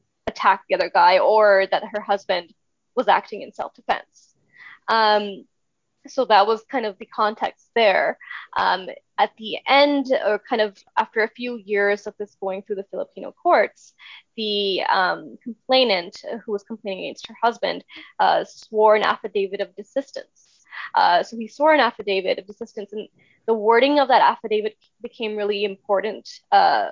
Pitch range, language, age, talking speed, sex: 200-230 Hz, English, 10-29, 155 wpm, female